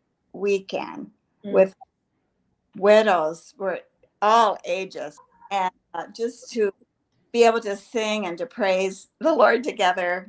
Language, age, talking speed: English, 50-69, 115 wpm